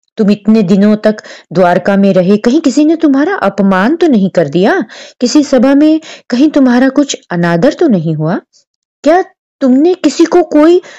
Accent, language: native, Hindi